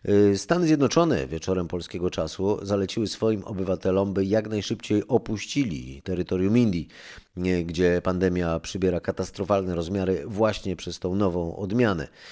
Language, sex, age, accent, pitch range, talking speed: Polish, male, 30-49, native, 90-110 Hz, 115 wpm